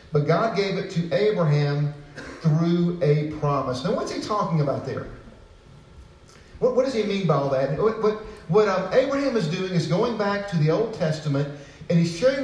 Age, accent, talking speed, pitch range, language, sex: 50-69, American, 190 wpm, 145-185 Hz, English, male